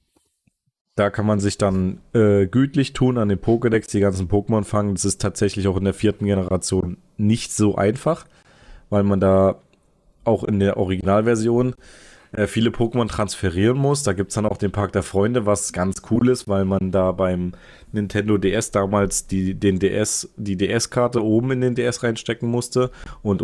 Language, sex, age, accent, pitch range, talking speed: German, male, 30-49, German, 95-110 Hz, 180 wpm